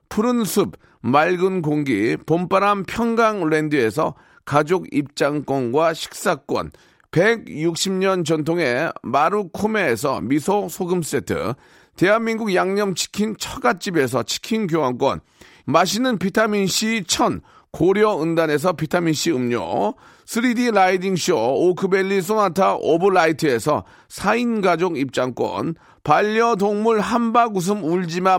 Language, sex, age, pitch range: Korean, male, 40-59, 165-220 Hz